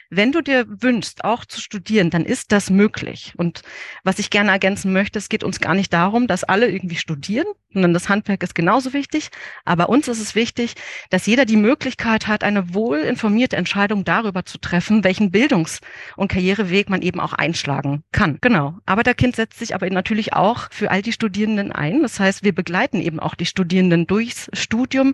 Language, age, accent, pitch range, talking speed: German, 40-59, German, 185-220 Hz, 195 wpm